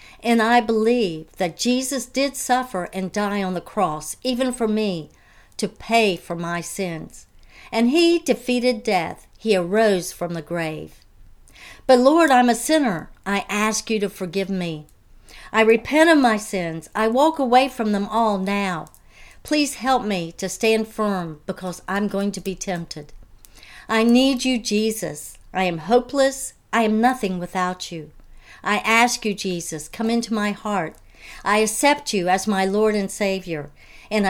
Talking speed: 165 wpm